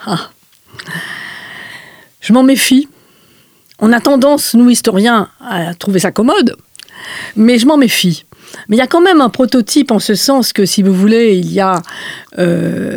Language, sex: French, female